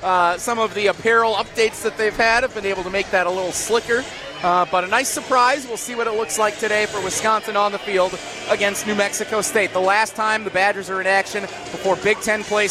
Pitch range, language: 185-235 Hz, English